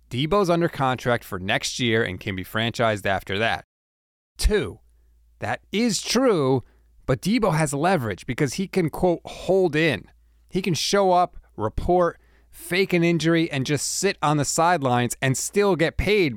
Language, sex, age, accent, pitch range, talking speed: English, male, 30-49, American, 115-185 Hz, 160 wpm